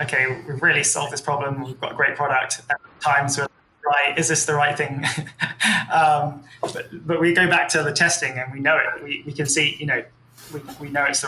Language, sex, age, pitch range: English, male, 20-39, 130-150 Hz